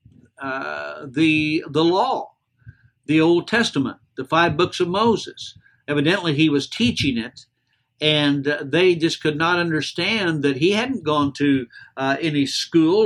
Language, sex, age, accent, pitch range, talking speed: English, male, 60-79, American, 130-160 Hz, 140 wpm